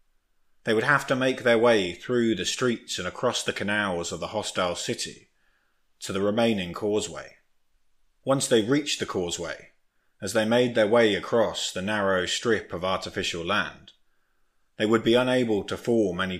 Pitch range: 95-120 Hz